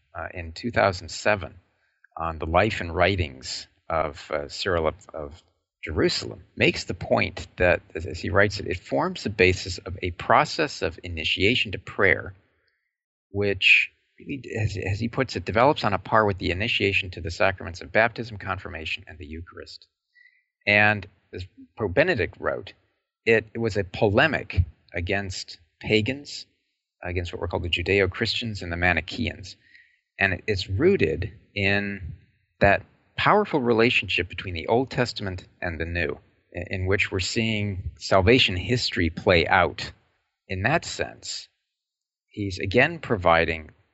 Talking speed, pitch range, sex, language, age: 145 wpm, 90-110 Hz, male, English, 40-59